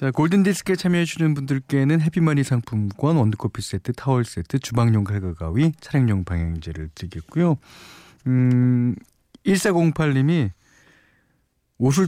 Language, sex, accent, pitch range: Korean, male, native, 105-160 Hz